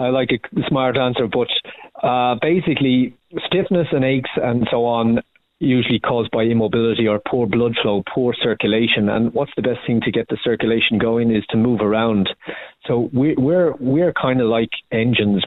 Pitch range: 110-120 Hz